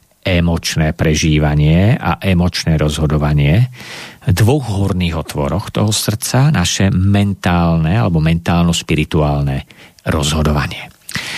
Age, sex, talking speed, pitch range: 50-69, male, 85 wpm, 80-110 Hz